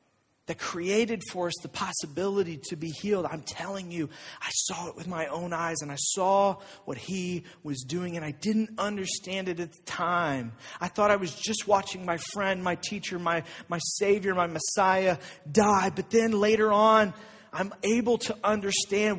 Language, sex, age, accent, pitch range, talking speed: English, male, 30-49, American, 160-200 Hz, 180 wpm